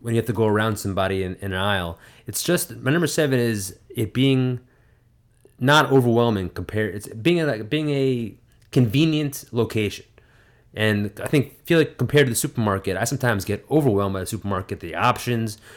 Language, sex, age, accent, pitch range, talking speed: English, male, 30-49, American, 105-130 Hz, 185 wpm